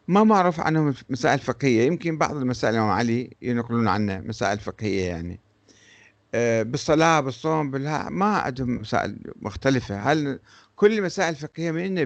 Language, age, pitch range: Arabic, 50-69, 110-165 Hz